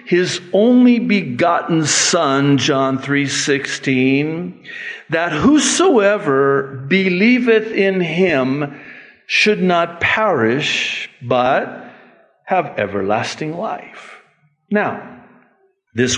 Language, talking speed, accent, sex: English, 75 wpm, American, male